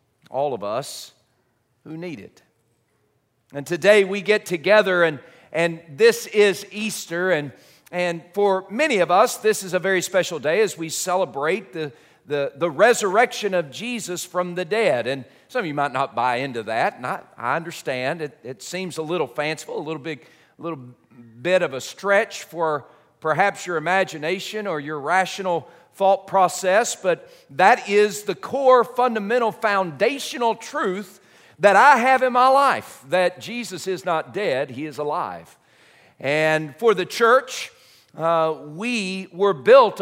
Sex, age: male, 50-69